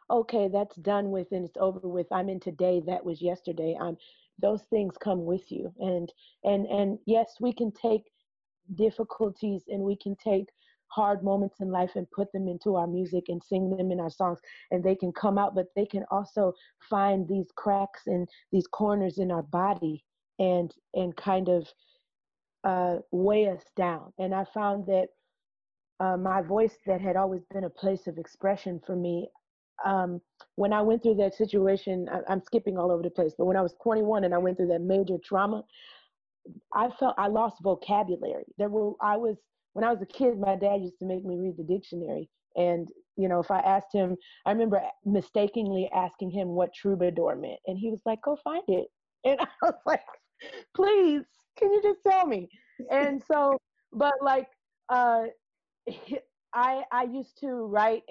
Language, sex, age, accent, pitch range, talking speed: English, female, 40-59, American, 185-220 Hz, 190 wpm